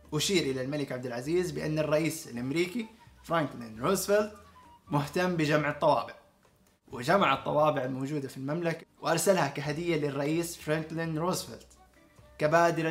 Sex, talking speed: male, 110 wpm